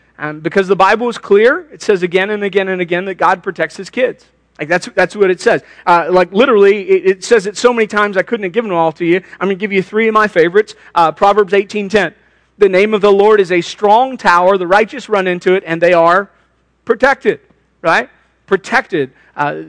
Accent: American